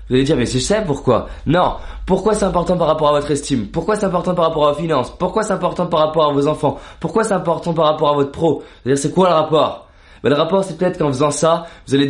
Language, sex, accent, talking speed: French, male, French, 325 wpm